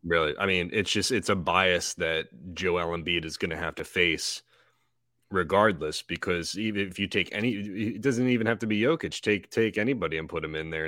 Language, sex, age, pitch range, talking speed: English, male, 30-49, 80-100 Hz, 215 wpm